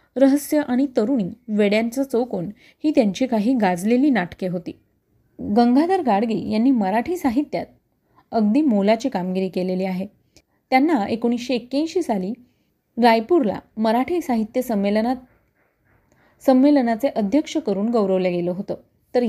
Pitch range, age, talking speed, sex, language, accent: 210-270 Hz, 30-49, 110 wpm, female, Marathi, native